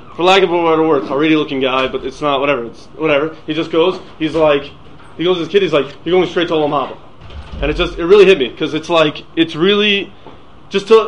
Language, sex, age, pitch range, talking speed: English, male, 30-49, 150-195 Hz, 255 wpm